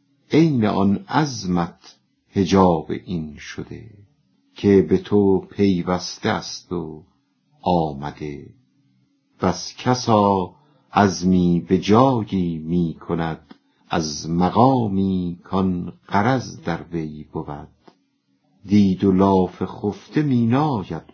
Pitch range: 85-105 Hz